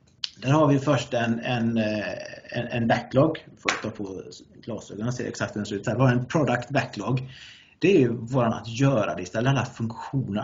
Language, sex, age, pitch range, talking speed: English, male, 30-49, 110-135 Hz, 195 wpm